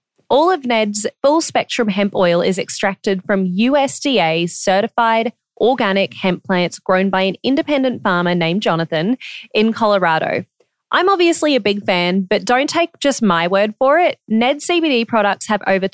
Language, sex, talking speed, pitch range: English, female, 150 wpm, 180-260 Hz